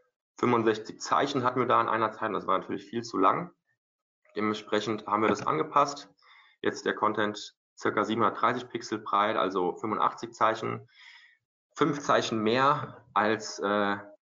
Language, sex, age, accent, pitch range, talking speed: German, male, 20-39, German, 100-125 Hz, 145 wpm